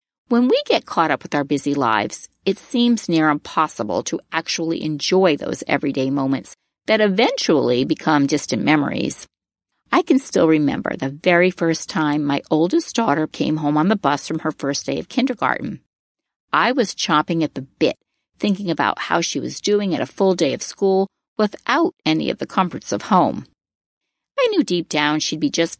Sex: female